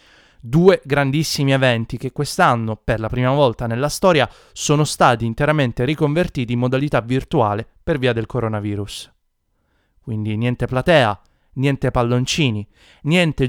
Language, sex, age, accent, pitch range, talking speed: Italian, male, 30-49, native, 115-150 Hz, 125 wpm